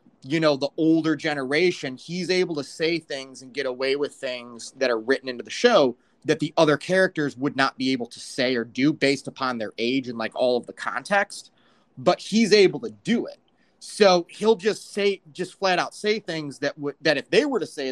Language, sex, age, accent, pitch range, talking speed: English, male, 30-49, American, 135-185 Hz, 220 wpm